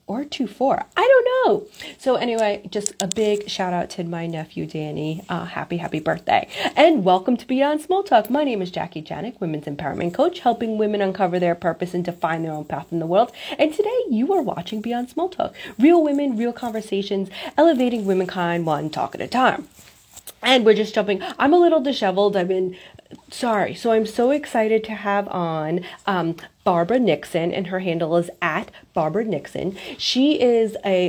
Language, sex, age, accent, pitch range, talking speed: English, female, 30-49, American, 180-255 Hz, 185 wpm